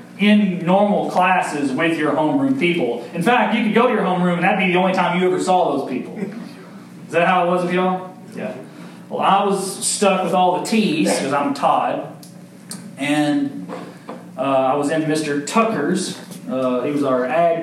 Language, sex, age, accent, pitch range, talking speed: English, male, 30-49, American, 145-200 Hz, 195 wpm